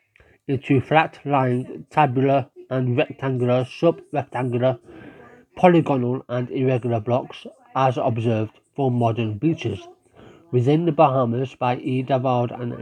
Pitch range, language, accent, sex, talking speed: 125-165 Hz, English, British, male, 105 wpm